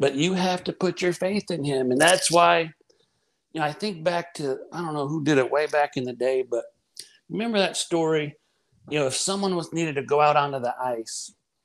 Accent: American